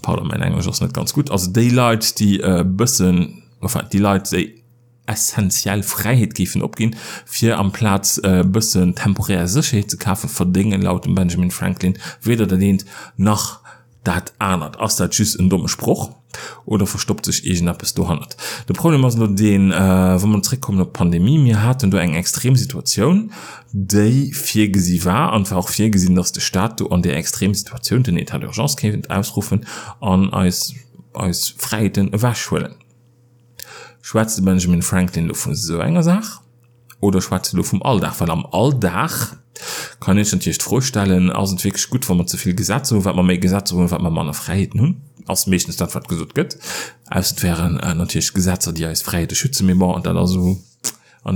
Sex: male